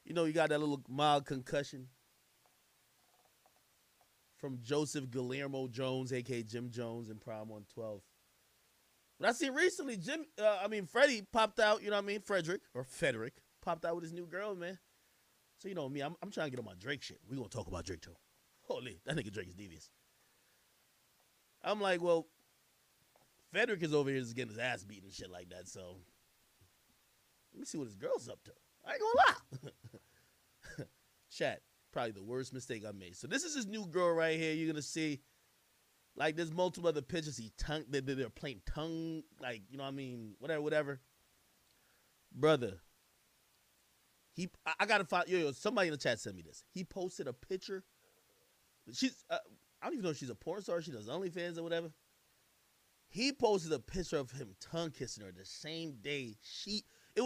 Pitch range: 125-185 Hz